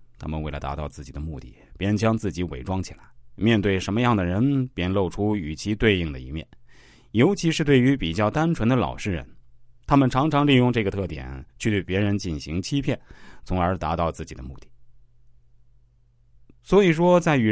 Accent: native